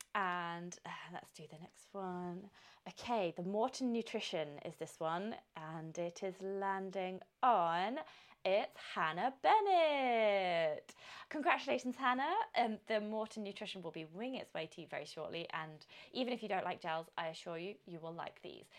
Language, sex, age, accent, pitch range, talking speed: English, female, 20-39, British, 165-245 Hz, 165 wpm